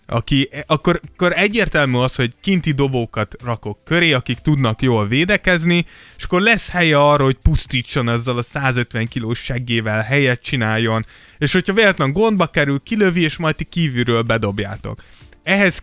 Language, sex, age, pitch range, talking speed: Hungarian, male, 20-39, 120-155 Hz, 150 wpm